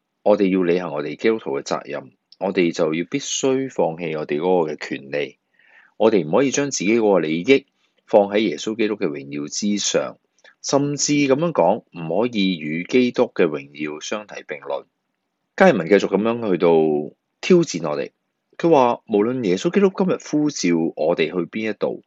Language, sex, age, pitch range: Chinese, male, 30-49, 90-130 Hz